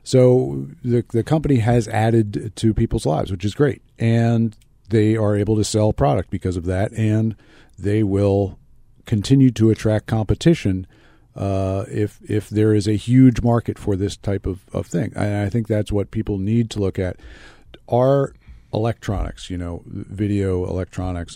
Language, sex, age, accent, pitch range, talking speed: English, male, 50-69, American, 95-120 Hz, 165 wpm